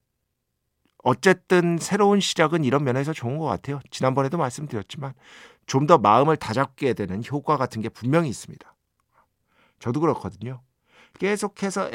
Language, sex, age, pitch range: Korean, male, 50-69, 120-170 Hz